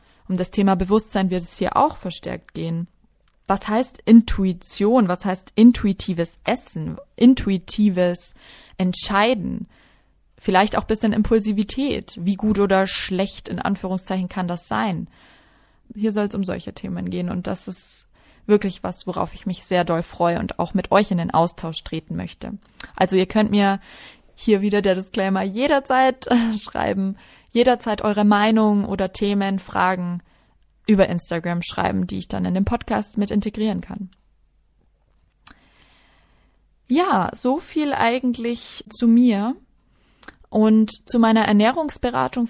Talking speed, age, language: 140 wpm, 20-39, German